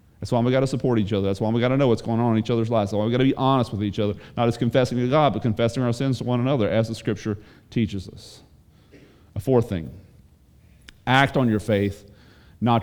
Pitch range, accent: 110-150 Hz, American